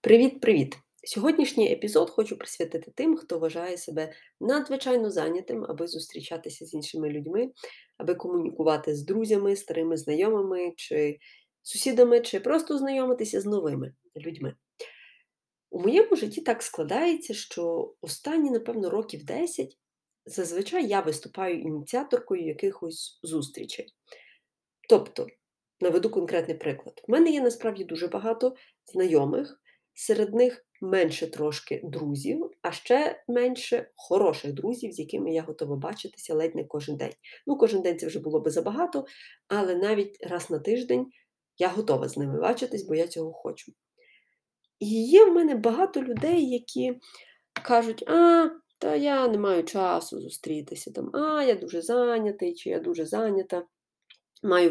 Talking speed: 135 wpm